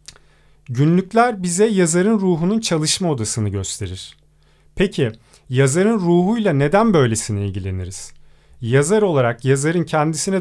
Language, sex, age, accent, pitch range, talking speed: Turkish, male, 40-59, native, 130-190 Hz, 100 wpm